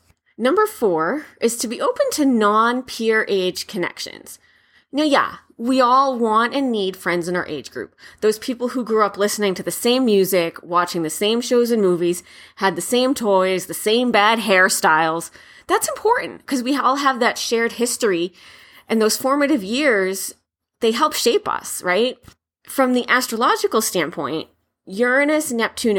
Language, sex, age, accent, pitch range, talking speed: English, female, 30-49, American, 185-245 Hz, 160 wpm